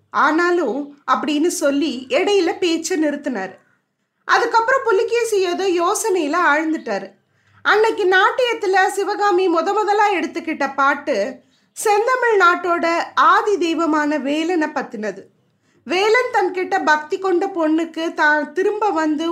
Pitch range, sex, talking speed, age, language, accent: 290-390 Hz, female, 100 wpm, 20-39, Tamil, native